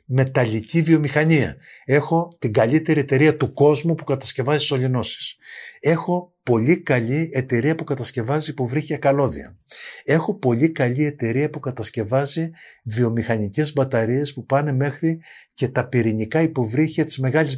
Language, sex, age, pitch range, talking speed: Greek, male, 50-69, 125-160 Hz, 125 wpm